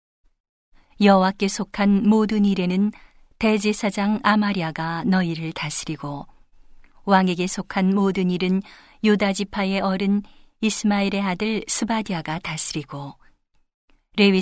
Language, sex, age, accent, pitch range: Korean, female, 40-59, native, 175-205 Hz